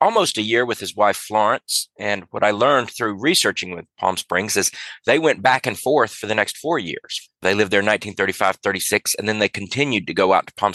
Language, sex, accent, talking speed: English, male, American, 235 wpm